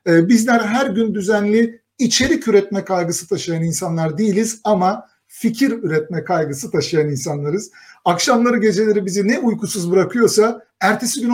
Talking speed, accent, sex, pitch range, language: 125 wpm, native, male, 170-220 Hz, Turkish